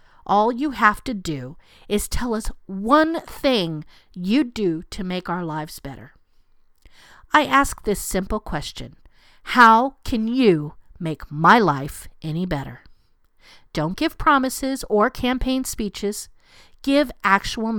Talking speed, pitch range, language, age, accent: 130 wpm, 165-275 Hz, English, 50-69, American